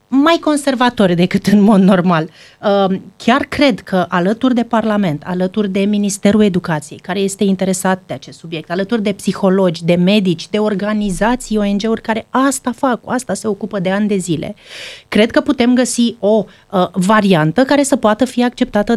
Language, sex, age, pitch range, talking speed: Romanian, female, 30-49, 195-245 Hz, 160 wpm